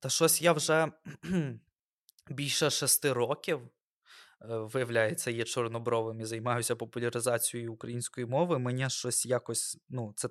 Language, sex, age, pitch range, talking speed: Ukrainian, male, 20-39, 120-160 Hz, 120 wpm